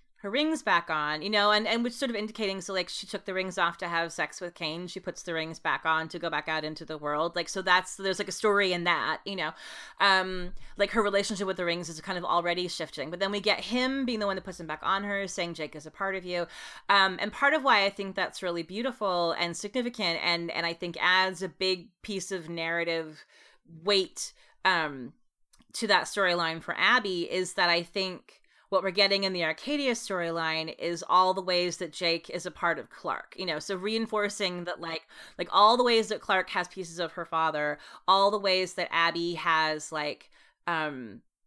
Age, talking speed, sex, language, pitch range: 30-49, 225 wpm, female, English, 170-200 Hz